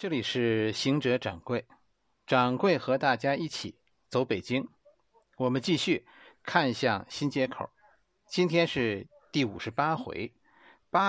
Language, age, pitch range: Chinese, 50-69, 125-195 Hz